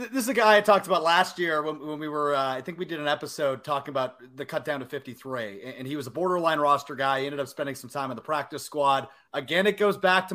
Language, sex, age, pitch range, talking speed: English, male, 30-49, 145-195 Hz, 285 wpm